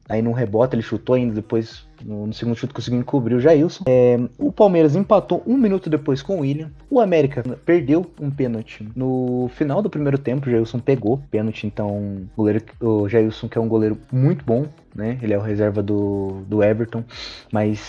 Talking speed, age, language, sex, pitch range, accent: 200 wpm, 20-39, Portuguese, male, 110-135 Hz, Brazilian